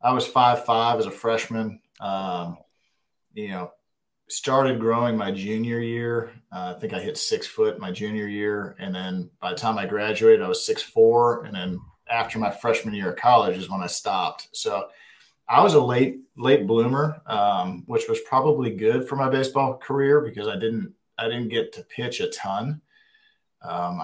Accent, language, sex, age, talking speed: American, English, male, 40-59, 185 wpm